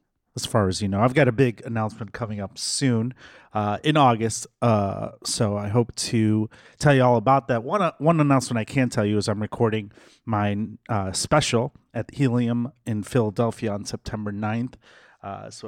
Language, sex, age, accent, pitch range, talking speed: English, male, 30-49, American, 110-130 Hz, 185 wpm